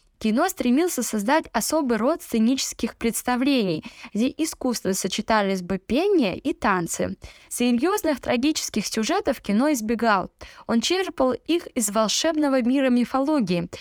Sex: female